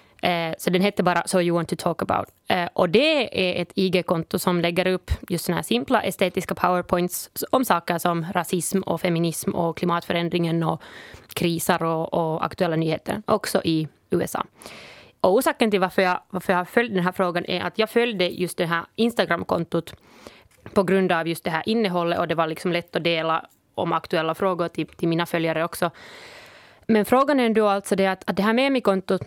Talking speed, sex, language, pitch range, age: 195 wpm, female, Swedish, 175-210 Hz, 20-39